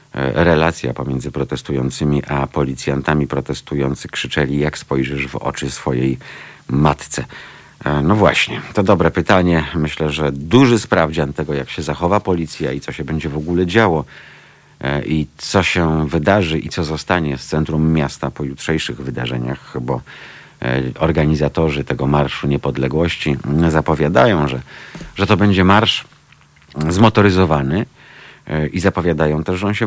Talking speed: 130 wpm